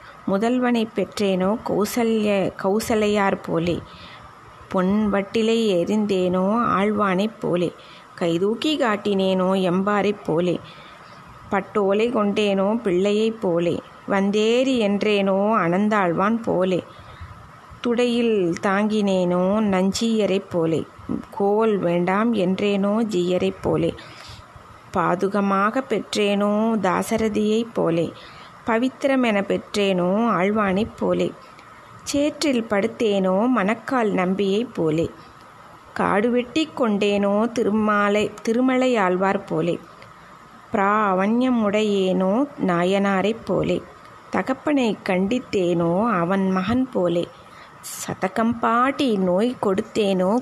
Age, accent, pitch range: 20-39, native, 190-225 Hz